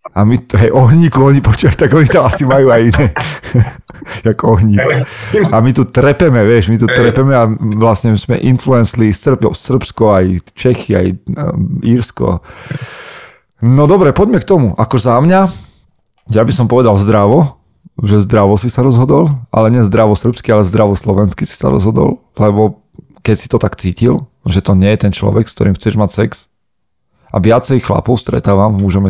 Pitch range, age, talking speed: 100-125 Hz, 40-59, 170 wpm